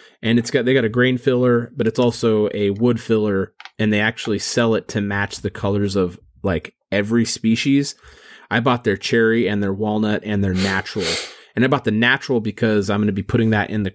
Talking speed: 225 wpm